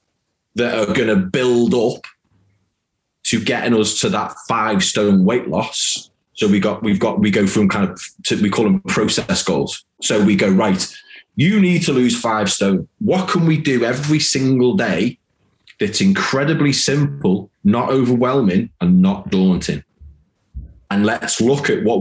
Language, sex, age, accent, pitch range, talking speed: English, male, 20-39, British, 105-170 Hz, 170 wpm